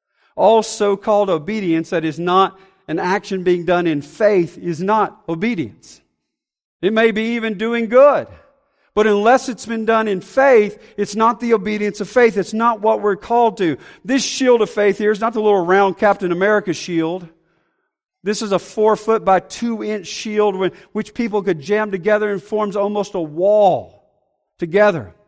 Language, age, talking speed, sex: English, 50-69, 175 wpm, male